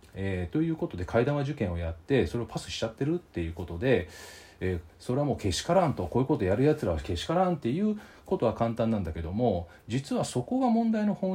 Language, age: Japanese, 40-59